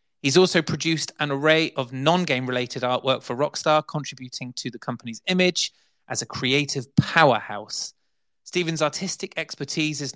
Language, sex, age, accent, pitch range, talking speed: English, male, 30-49, British, 130-165 Hz, 135 wpm